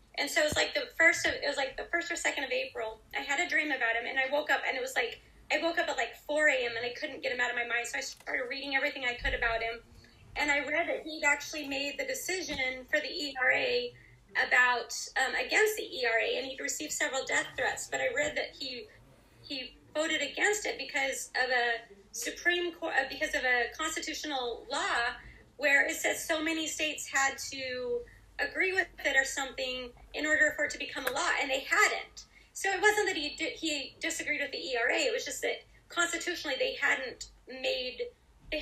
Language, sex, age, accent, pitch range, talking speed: English, female, 30-49, American, 265-340 Hz, 220 wpm